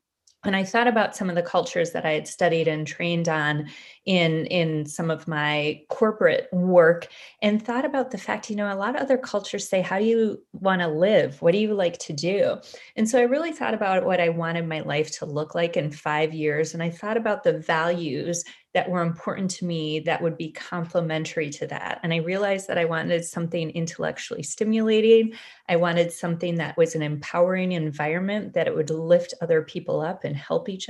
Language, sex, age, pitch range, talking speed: English, female, 30-49, 160-205 Hz, 210 wpm